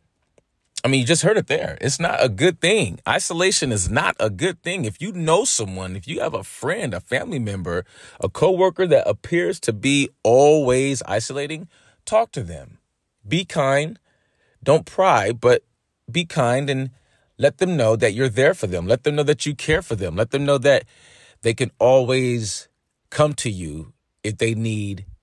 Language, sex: English, male